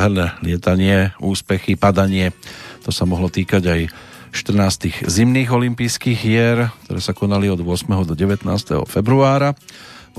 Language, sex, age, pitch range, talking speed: Slovak, male, 40-59, 90-110 Hz, 125 wpm